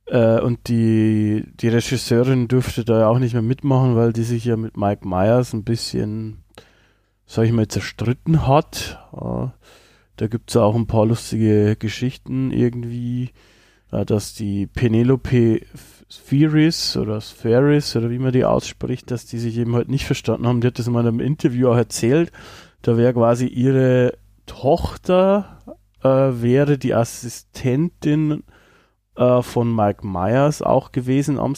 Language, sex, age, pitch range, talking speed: German, male, 20-39, 110-135 Hz, 150 wpm